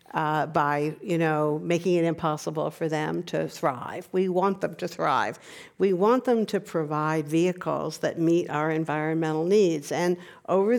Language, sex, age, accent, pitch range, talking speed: English, female, 60-79, American, 160-190 Hz, 160 wpm